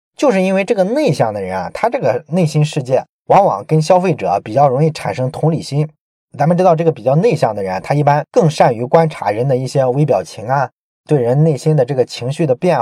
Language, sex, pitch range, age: Chinese, male, 130-170 Hz, 20-39